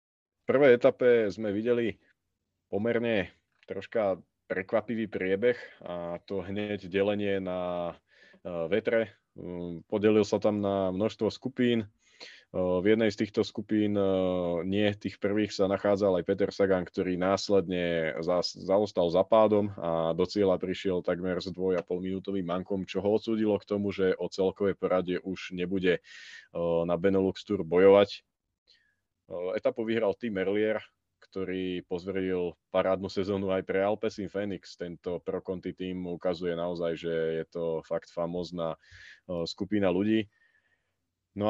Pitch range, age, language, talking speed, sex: 90-105 Hz, 20-39, Slovak, 130 wpm, male